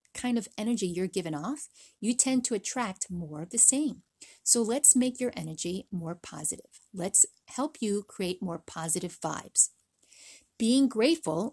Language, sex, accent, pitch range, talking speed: English, female, American, 180-250 Hz, 155 wpm